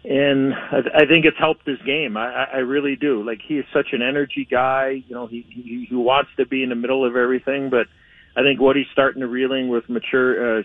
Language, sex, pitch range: English, male, 115-130 Hz